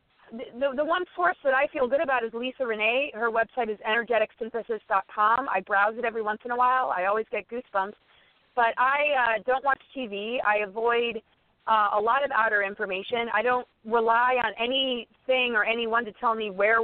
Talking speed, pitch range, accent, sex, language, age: 190 wpm, 215-260 Hz, American, female, English, 30-49